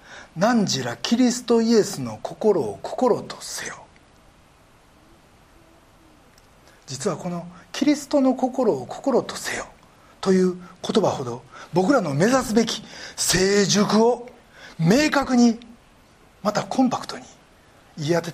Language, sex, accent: Japanese, male, native